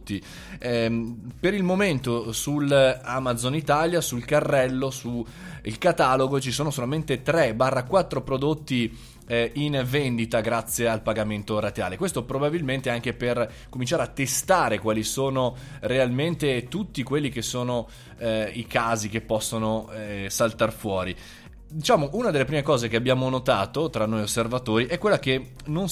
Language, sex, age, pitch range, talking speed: Italian, male, 20-39, 115-145 Hz, 140 wpm